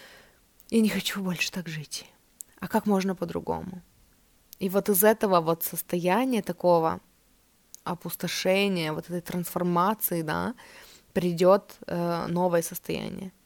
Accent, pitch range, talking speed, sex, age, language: native, 170-195 Hz, 110 wpm, female, 20-39, Russian